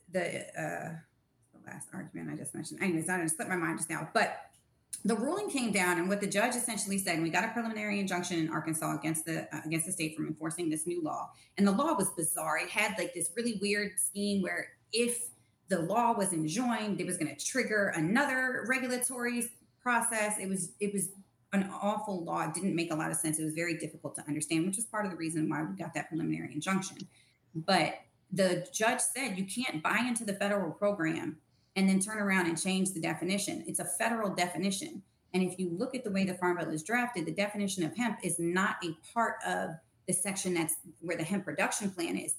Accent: American